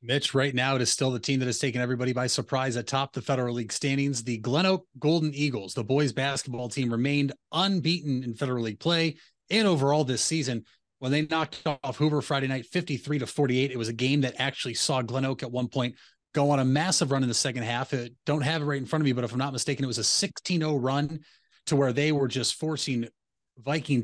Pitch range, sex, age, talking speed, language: 125-150 Hz, male, 30-49, 230 wpm, English